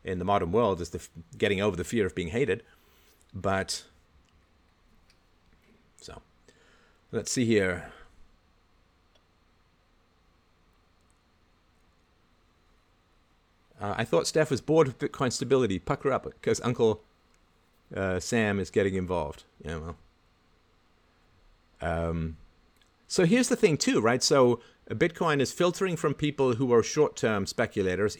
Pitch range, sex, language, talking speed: 85-120 Hz, male, English, 120 wpm